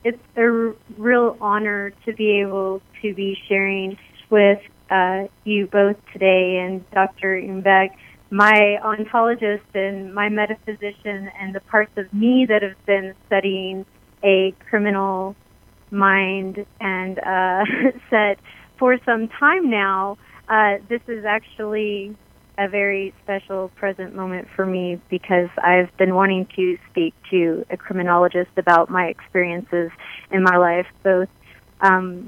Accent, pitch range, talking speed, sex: American, 190-210 Hz, 130 wpm, female